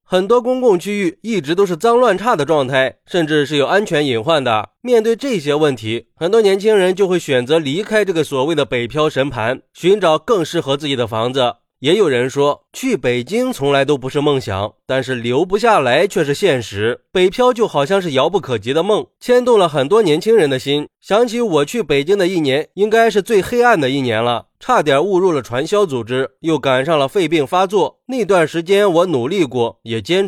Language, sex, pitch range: Chinese, male, 130-210 Hz